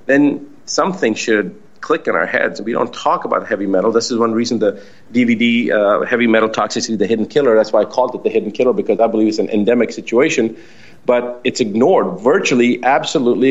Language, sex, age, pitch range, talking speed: English, male, 40-59, 110-130 Hz, 205 wpm